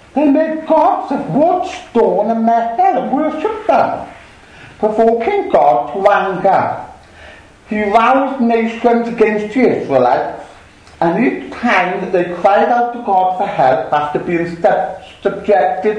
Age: 60-79